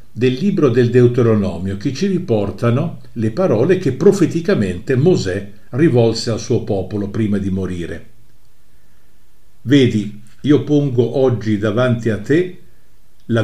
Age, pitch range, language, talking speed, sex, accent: 50-69, 110-150 Hz, Italian, 120 wpm, male, native